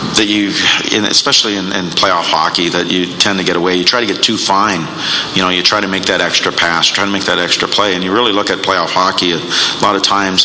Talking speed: 260 wpm